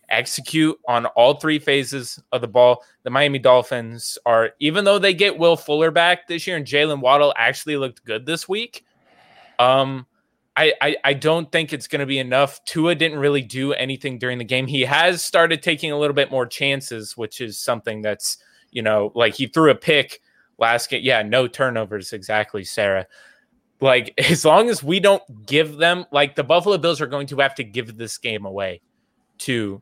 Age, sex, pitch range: 20-39, male, 120-150 Hz